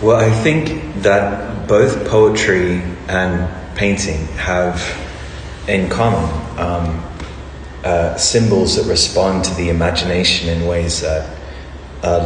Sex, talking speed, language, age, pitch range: male, 115 wpm, English, 30-49, 70-95 Hz